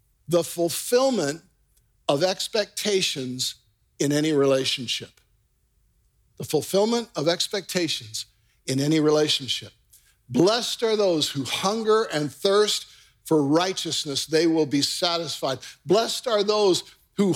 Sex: male